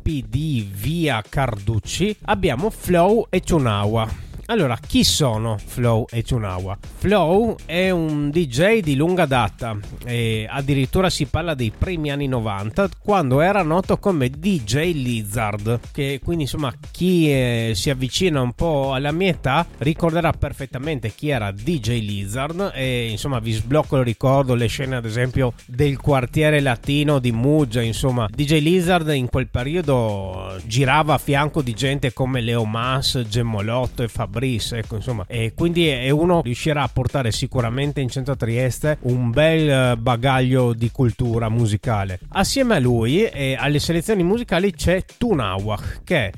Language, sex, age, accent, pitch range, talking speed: Italian, male, 30-49, native, 115-160 Hz, 145 wpm